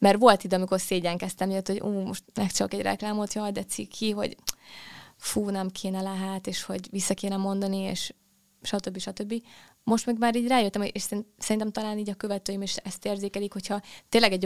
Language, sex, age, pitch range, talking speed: Hungarian, female, 20-39, 185-205 Hz, 185 wpm